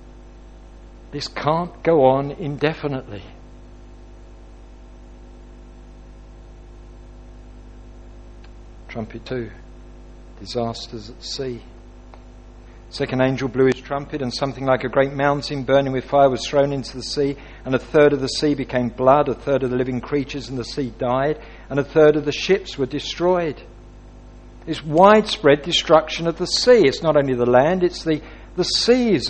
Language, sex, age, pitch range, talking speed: English, male, 60-79, 115-165 Hz, 145 wpm